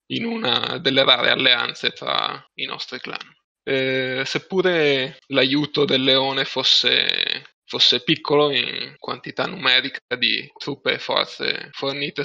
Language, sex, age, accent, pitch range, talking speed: Italian, male, 20-39, native, 130-150 Hz, 120 wpm